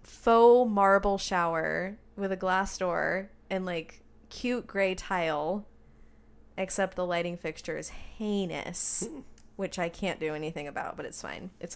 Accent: American